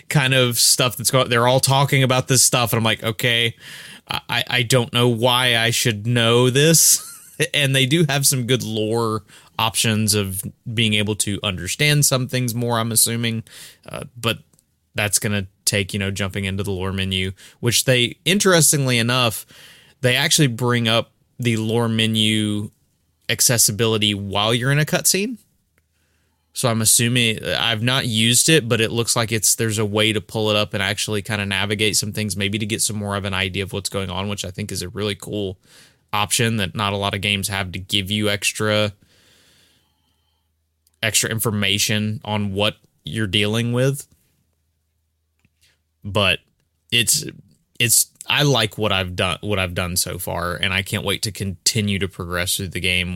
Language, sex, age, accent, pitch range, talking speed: English, male, 20-39, American, 95-120 Hz, 180 wpm